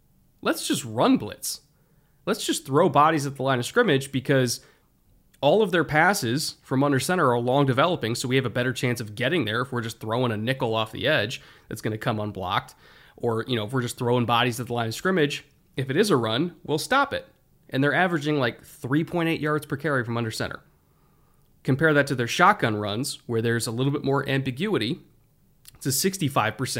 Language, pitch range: English, 120-155 Hz